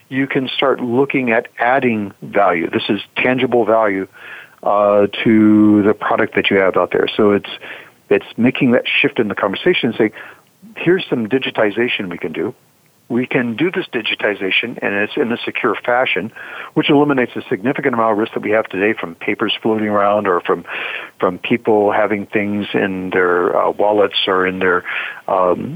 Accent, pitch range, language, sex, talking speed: American, 105-135 Hz, English, male, 180 wpm